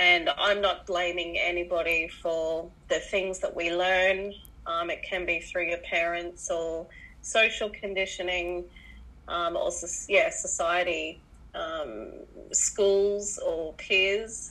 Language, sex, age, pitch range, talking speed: English, female, 20-39, 160-195 Hz, 120 wpm